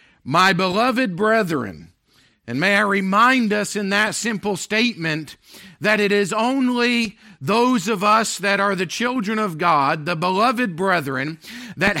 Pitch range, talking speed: 160-220 Hz, 145 wpm